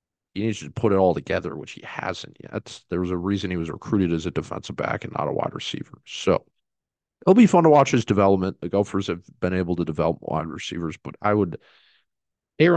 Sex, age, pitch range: male, 40-59, 85-115 Hz